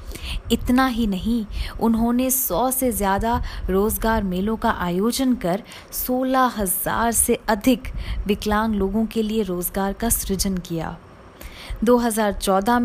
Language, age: Hindi, 20-39